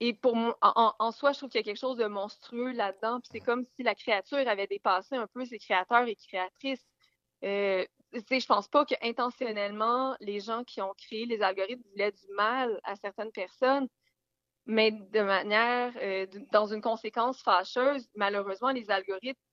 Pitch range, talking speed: 200-240 Hz, 180 wpm